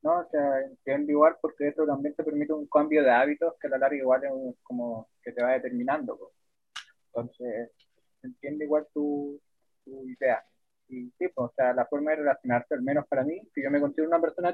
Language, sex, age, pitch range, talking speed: English, male, 20-39, 140-180 Hz, 210 wpm